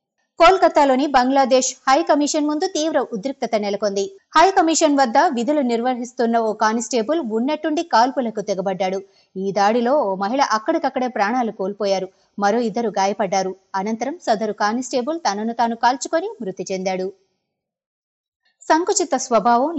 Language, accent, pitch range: Telugu, native, 200-270 Hz